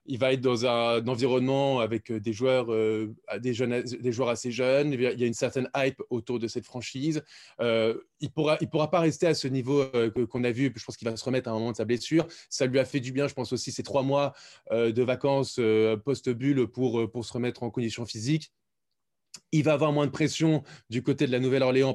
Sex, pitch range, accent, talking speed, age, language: male, 115-140 Hz, French, 225 wpm, 20-39, French